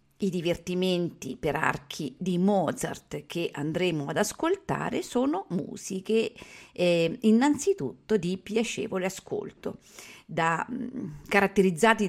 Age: 50-69